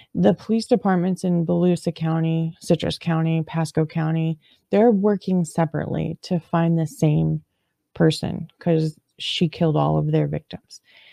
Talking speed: 135 wpm